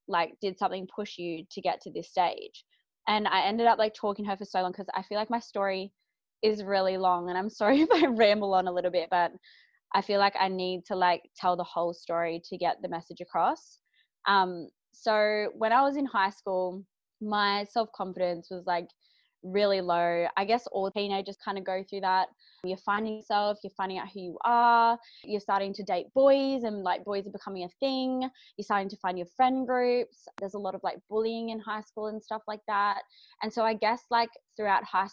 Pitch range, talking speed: 185-225 Hz, 220 wpm